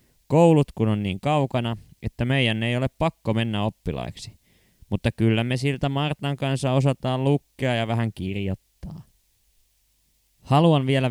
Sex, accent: male, native